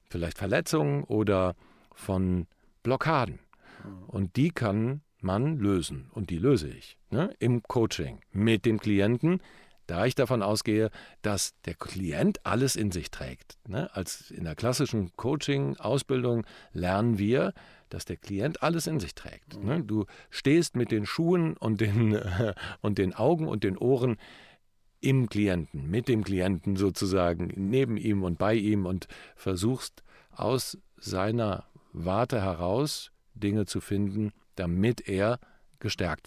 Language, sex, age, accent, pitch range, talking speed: German, male, 50-69, German, 95-120 Hz, 135 wpm